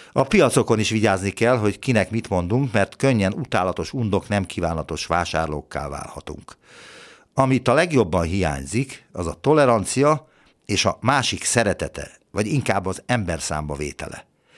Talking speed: 140 wpm